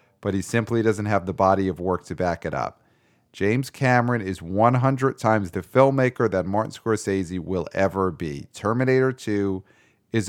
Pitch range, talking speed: 95-115 Hz, 170 wpm